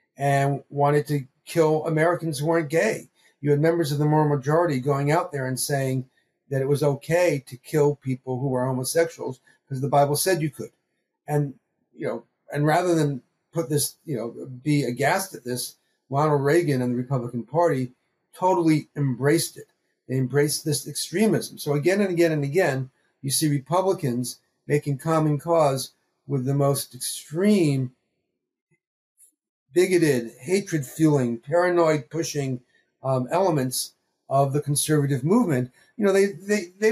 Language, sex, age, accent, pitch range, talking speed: English, male, 50-69, American, 130-165 Hz, 150 wpm